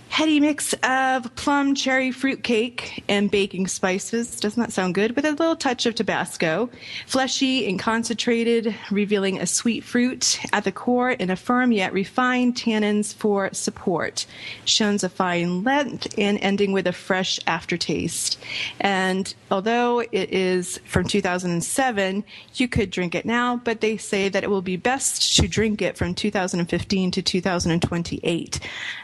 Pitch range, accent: 180-240 Hz, American